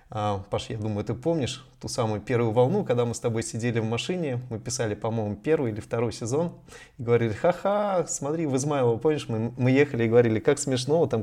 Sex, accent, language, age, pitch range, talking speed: male, native, Russian, 20-39, 115-145 Hz, 205 wpm